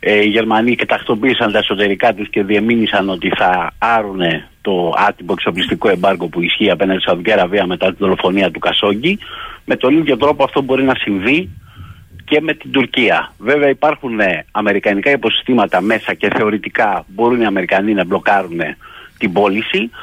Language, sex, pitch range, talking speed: Greek, male, 105-155 Hz, 155 wpm